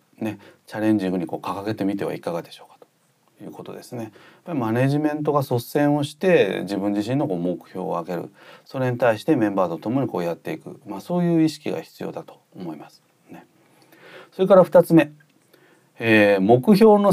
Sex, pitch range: male, 115-170 Hz